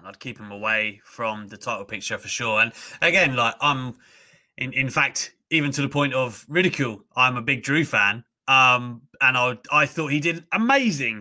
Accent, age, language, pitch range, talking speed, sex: British, 30-49, English, 130-185 Hz, 195 wpm, male